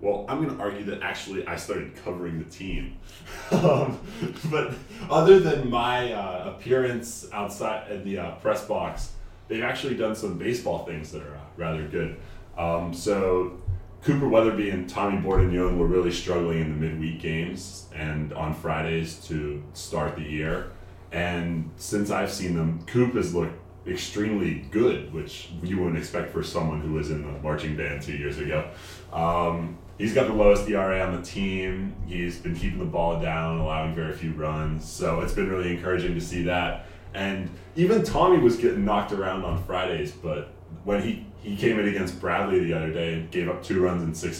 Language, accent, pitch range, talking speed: English, American, 85-100 Hz, 180 wpm